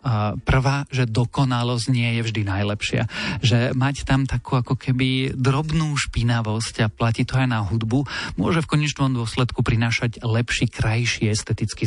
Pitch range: 115-130 Hz